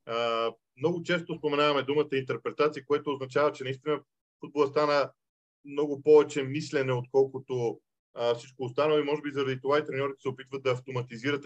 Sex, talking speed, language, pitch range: male, 155 wpm, Bulgarian, 135-175 Hz